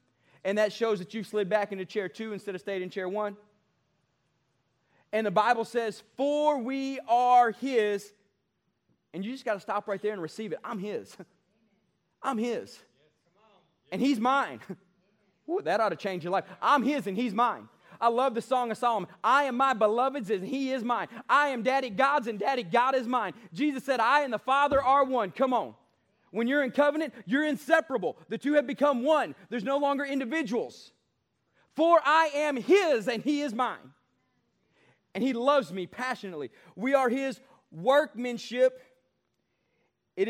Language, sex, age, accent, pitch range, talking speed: English, male, 30-49, American, 205-265 Hz, 175 wpm